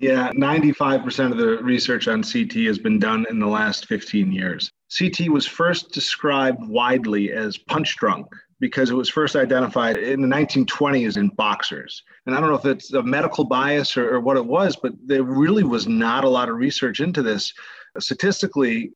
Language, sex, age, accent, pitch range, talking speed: English, male, 40-59, American, 125-180 Hz, 185 wpm